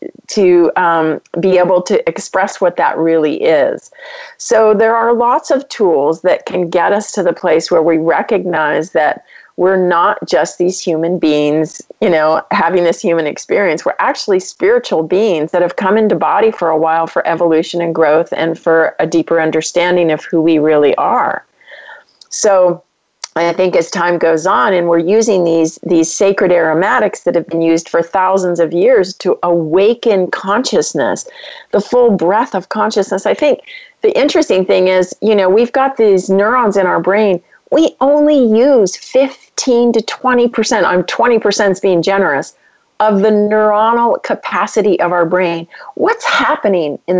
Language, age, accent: English, 40-59, American